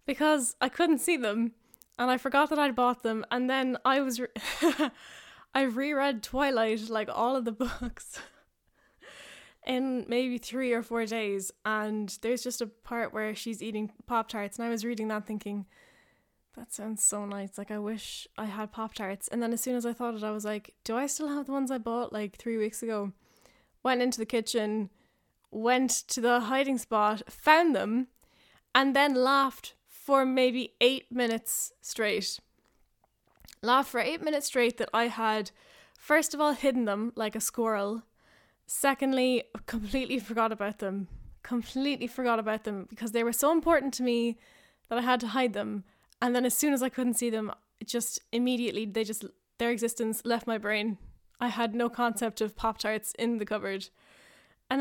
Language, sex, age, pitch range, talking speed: English, female, 10-29, 220-260 Hz, 180 wpm